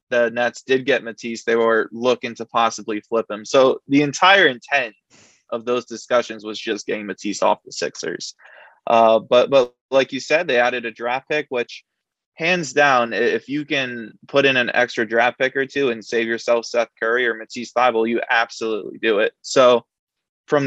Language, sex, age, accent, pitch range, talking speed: English, male, 20-39, American, 115-140 Hz, 190 wpm